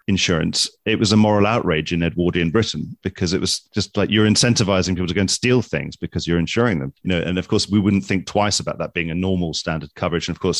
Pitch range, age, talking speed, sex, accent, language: 85-110 Hz, 30-49, 255 wpm, male, British, English